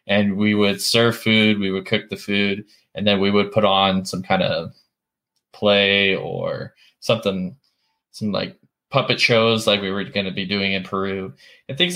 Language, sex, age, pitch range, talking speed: English, male, 10-29, 95-115 Hz, 185 wpm